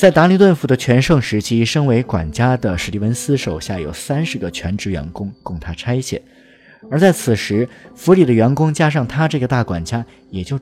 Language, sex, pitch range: Chinese, male, 95-155 Hz